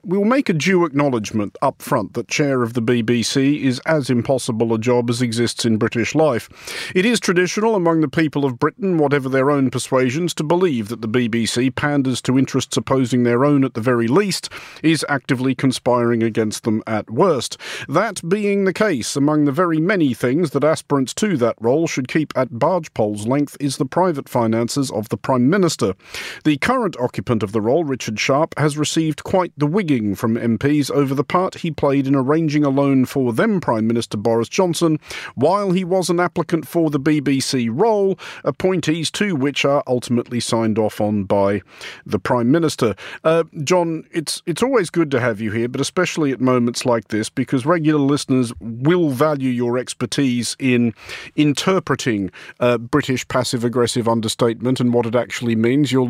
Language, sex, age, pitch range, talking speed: English, male, 50-69, 120-160 Hz, 185 wpm